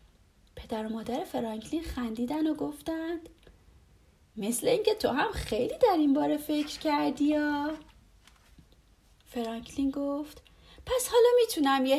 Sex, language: female, Persian